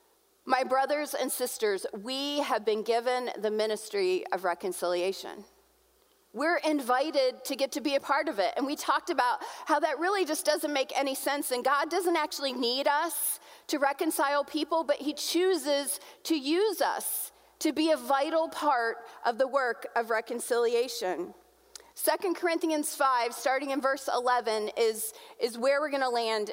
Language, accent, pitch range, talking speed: English, American, 230-320 Hz, 165 wpm